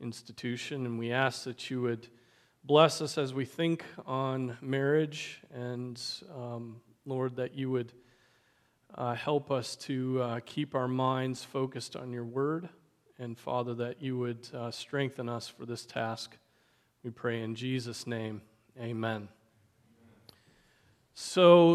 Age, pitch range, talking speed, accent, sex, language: 40-59, 120-145 Hz, 140 wpm, American, male, English